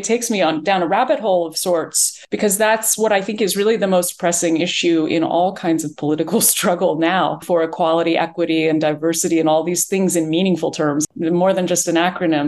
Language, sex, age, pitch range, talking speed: English, female, 30-49, 150-180 Hz, 215 wpm